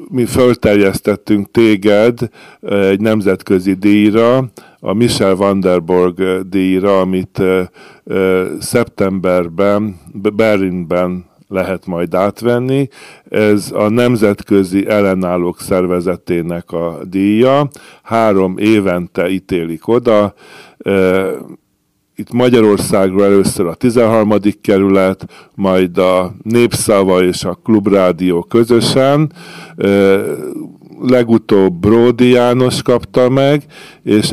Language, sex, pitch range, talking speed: Hungarian, male, 95-110 Hz, 80 wpm